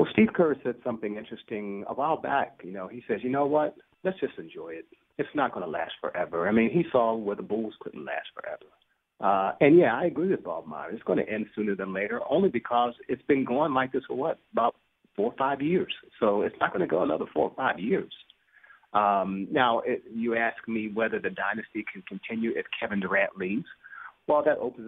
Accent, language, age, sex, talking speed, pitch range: American, English, 40-59, male, 225 wpm, 110-150 Hz